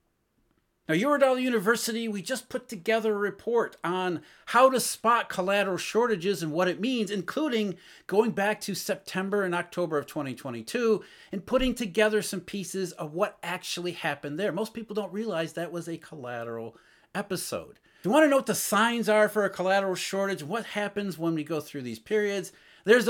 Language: English